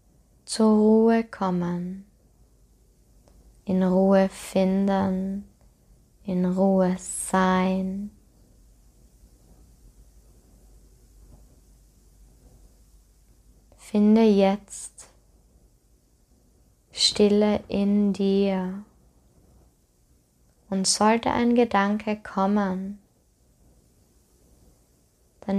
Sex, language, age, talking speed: female, German, 20-39, 45 wpm